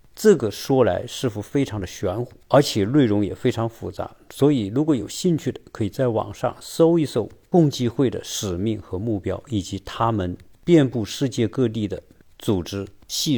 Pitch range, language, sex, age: 100-140 Hz, Chinese, male, 50-69